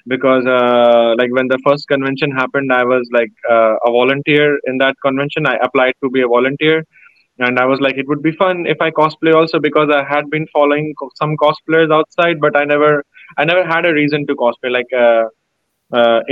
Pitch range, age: 130-150 Hz, 20-39